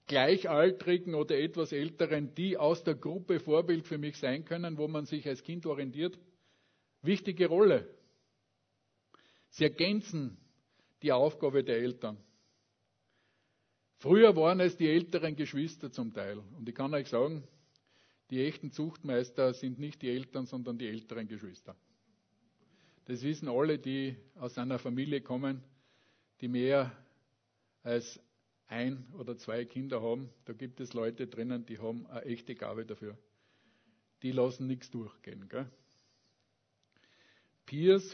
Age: 50-69